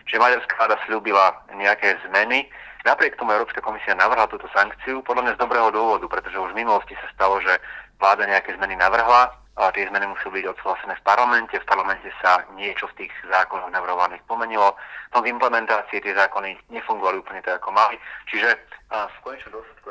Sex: male